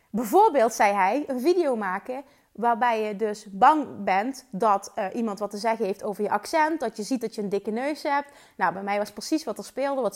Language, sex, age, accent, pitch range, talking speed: Dutch, female, 30-49, Dutch, 210-270 Hz, 230 wpm